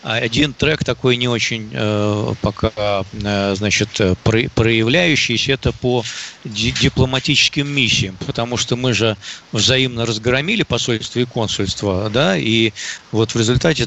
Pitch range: 110-125 Hz